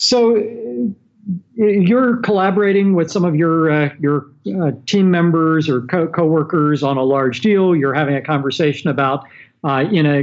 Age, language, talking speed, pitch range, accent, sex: 50-69, English, 160 wpm, 140-180 Hz, American, male